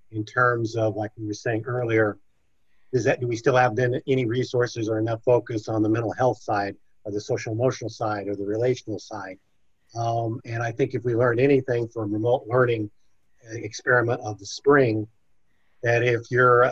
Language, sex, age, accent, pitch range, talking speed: English, male, 50-69, American, 105-125 Hz, 185 wpm